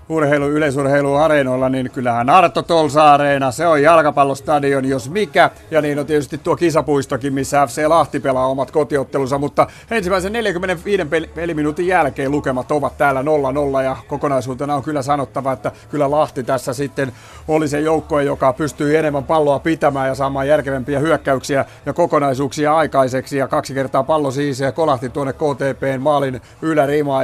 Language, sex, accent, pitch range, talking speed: Finnish, male, native, 130-150 Hz, 155 wpm